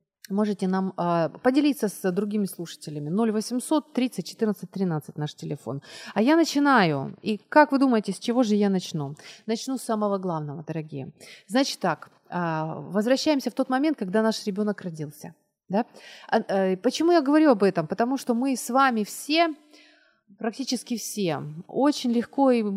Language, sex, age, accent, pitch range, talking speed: Ukrainian, female, 30-49, native, 175-235 Hz, 155 wpm